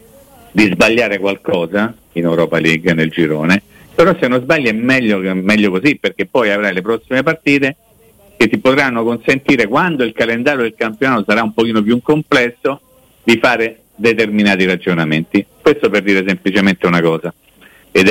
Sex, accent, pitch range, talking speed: male, native, 90-115 Hz, 160 wpm